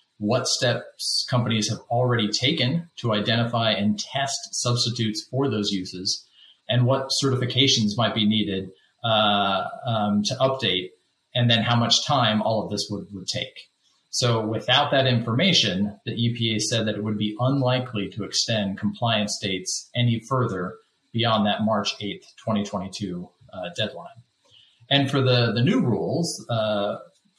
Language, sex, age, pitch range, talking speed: English, male, 30-49, 105-125 Hz, 145 wpm